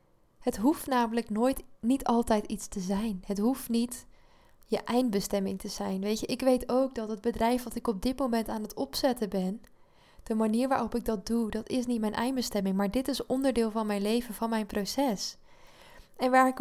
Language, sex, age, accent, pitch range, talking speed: Dutch, female, 10-29, Dutch, 200-235 Hz, 205 wpm